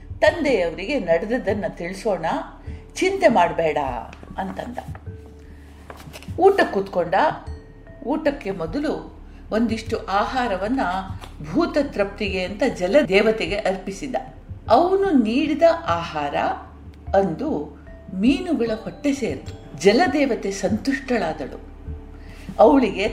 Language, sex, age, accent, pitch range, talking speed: Kannada, female, 50-69, native, 160-240 Hz, 75 wpm